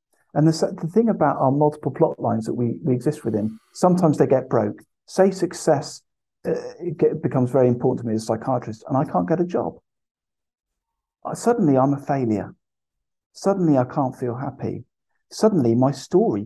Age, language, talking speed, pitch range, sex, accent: 50-69, English, 170 wpm, 120-165 Hz, male, British